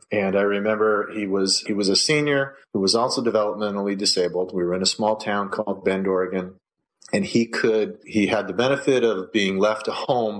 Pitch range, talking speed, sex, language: 100-120 Hz, 200 wpm, male, English